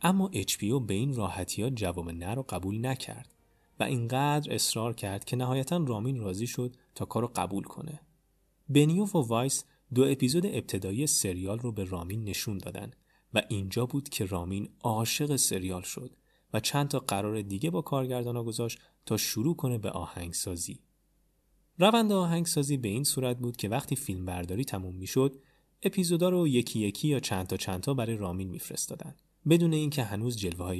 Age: 30-49